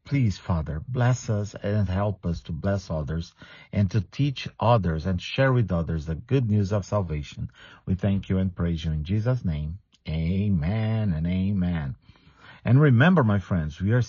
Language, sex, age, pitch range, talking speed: English, male, 50-69, 90-125 Hz, 175 wpm